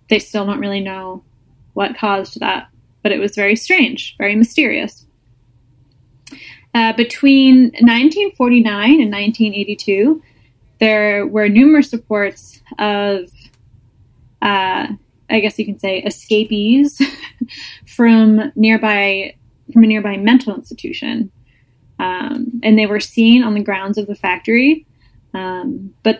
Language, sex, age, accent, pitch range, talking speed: English, female, 10-29, American, 200-245 Hz, 120 wpm